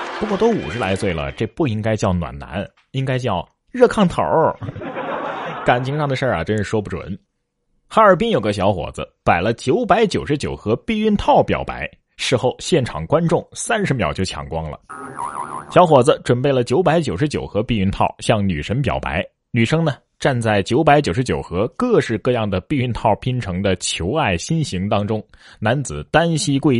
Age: 30-49